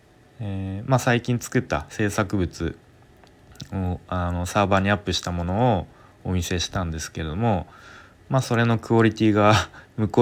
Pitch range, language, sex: 90-120 Hz, Japanese, male